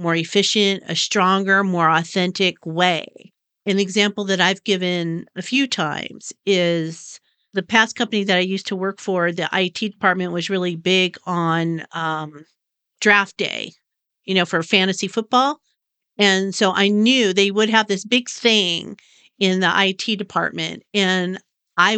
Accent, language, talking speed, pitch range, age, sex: American, English, 155 wpm, 185-220 Hz, 50-69, female